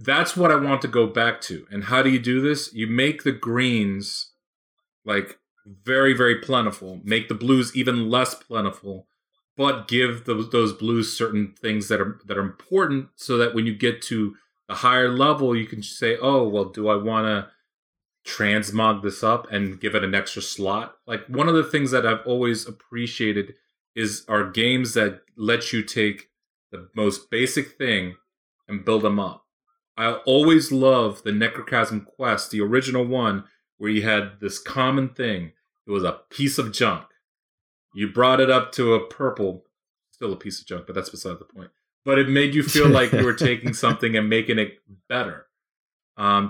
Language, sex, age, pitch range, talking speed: English, male, 30-49, 105-130 Hz, 185 wpm